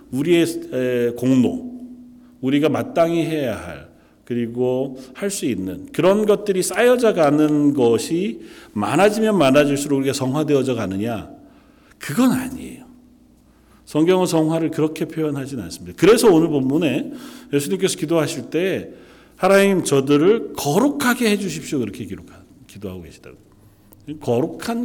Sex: male